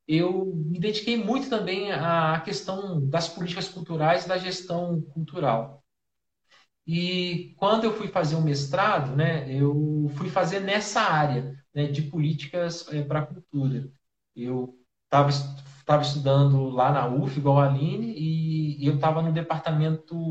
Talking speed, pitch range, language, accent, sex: 145 wpm, 140-170 Hz, Portuguese, Brazilian, male